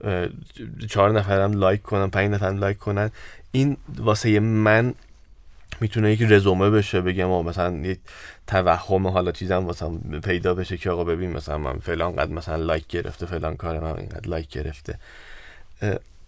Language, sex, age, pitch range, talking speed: Persian, male, 30-49, 80-100 Hz, 145 wpm